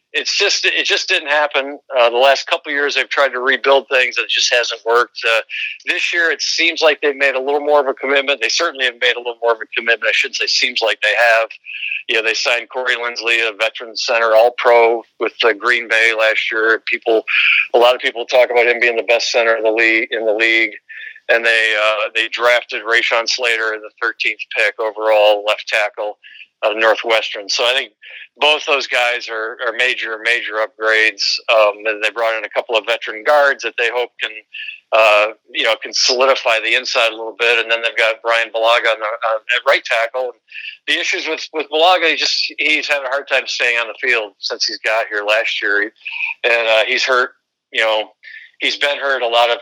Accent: American